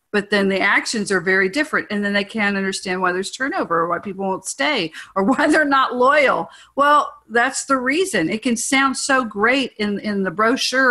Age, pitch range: 50-69, 190-260 Hz